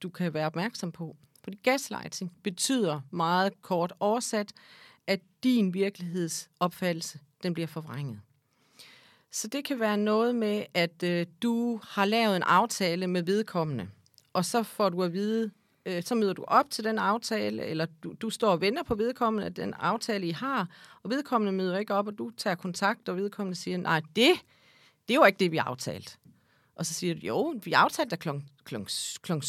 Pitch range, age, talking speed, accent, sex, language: 160-215 Hz, 40-59, 175 wpm, native, female, Danish